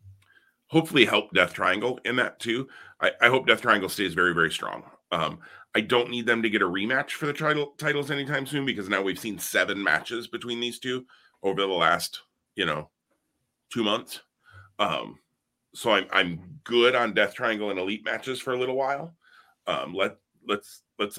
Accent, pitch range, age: American, 95-120 Hz, 30-49